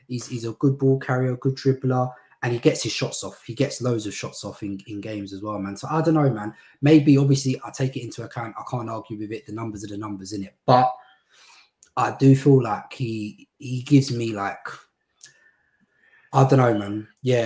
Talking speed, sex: 225 wpm, male